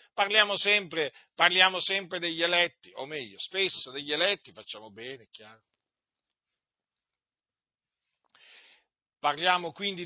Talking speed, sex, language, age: 90 wpm, male, Italian, 50-69